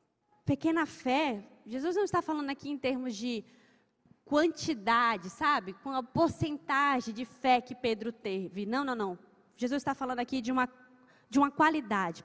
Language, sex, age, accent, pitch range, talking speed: Portuguese, female, 20-39, Brazilian, 240-335 Hz, 150 wpm